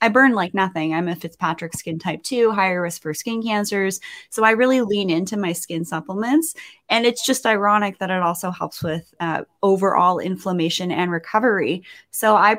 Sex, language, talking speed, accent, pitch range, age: female, English, 185 wpm, American, 170-220 Hz, 20-39